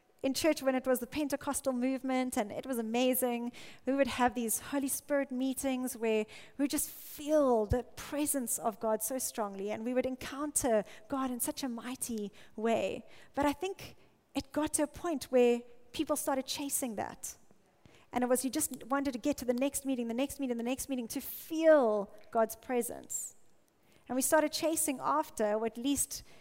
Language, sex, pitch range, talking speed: English, female, 245-295 Hz, 190 wpm